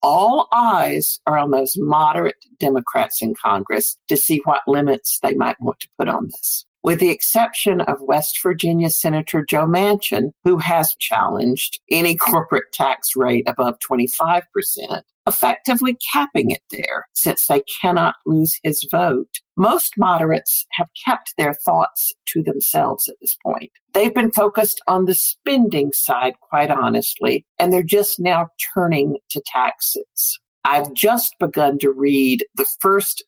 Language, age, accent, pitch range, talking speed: English, 50-69, American, 145-205 Hz, 150 wpm